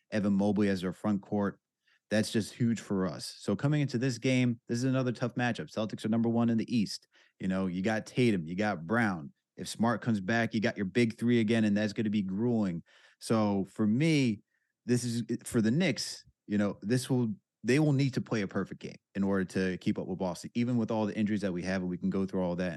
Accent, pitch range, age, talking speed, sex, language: American, 100-120 Hz, 30-49, 250 wpm, male, English